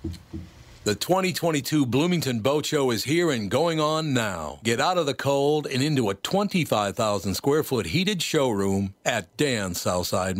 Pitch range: 115-160 Hz